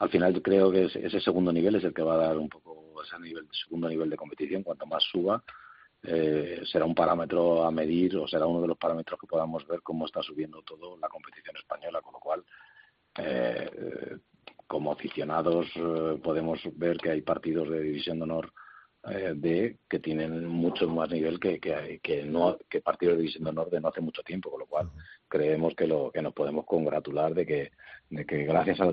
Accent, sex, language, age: Spanish, male, Spanish, 40-59